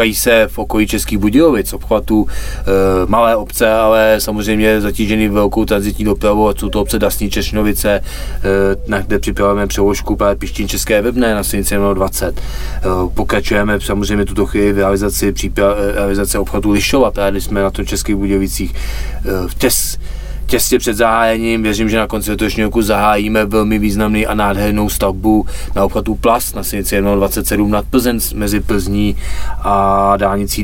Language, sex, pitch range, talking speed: Czech, male, 95-110 Hz, 155 wpm